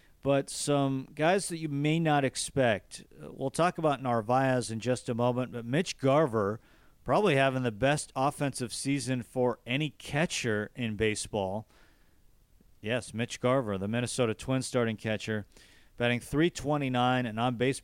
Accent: American